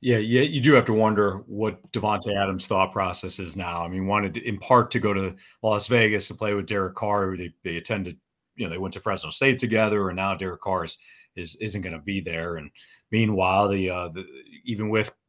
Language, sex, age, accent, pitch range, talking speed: English, male, 40-59, American, 95-110 Hz, 230 wpm